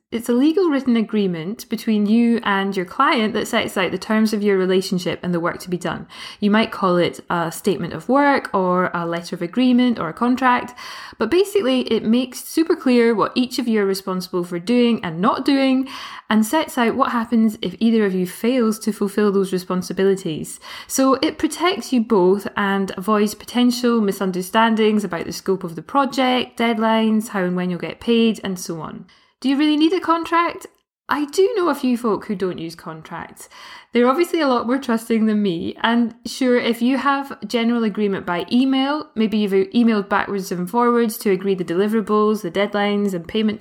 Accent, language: British, English